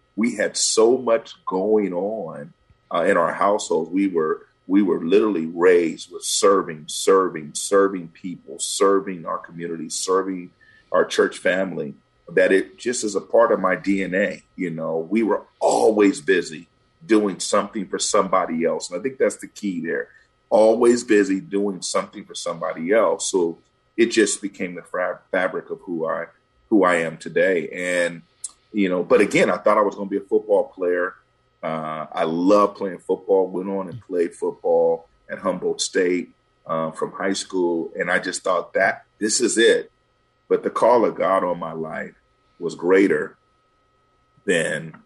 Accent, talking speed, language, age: American, 170 wpm, English, 40-59